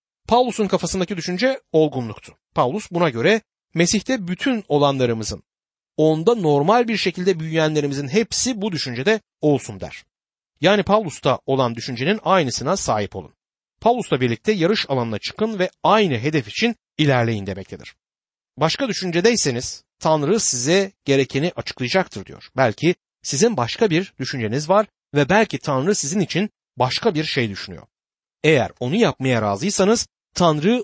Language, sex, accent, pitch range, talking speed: Turkish, male, native, 125-195 Hz, 125 wpm